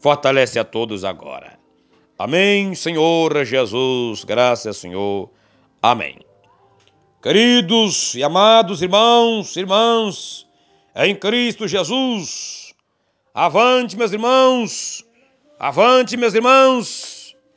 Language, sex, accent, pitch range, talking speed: Portuguese, male, Brazilian, 160-225 Hz, 85 wpm